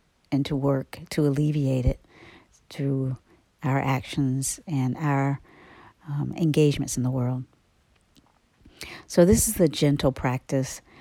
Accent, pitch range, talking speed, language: American, 130-150 Hz, 120 wpm, English